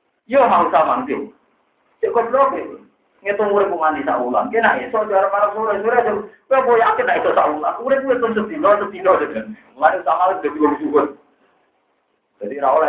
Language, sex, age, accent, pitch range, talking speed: Indonesian, male, 50-69, native, 150-235 Hz, 90 wpm